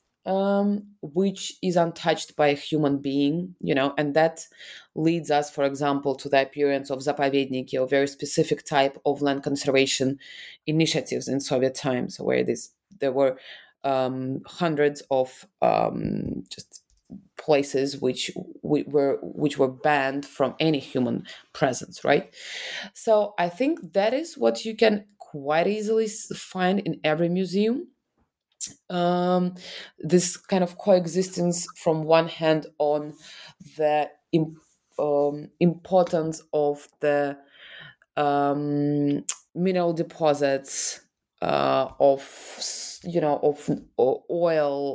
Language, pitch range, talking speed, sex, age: English, 140-175 Hz, 125 wpm, female, 20-39